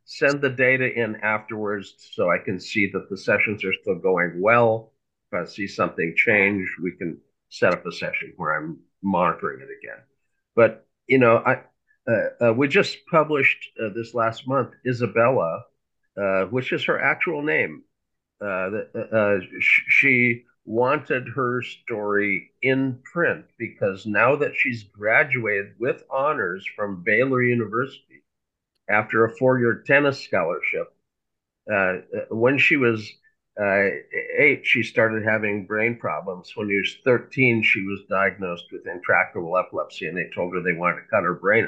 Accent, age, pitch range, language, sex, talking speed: American, 50-69, 100-130 Hz, English, male, 155 wpm